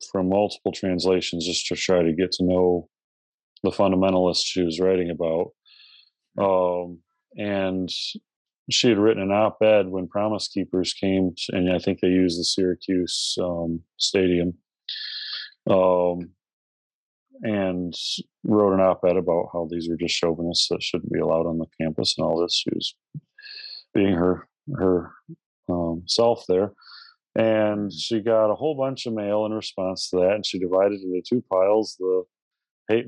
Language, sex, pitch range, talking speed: English, male, 90-110 Hz, 160 wpm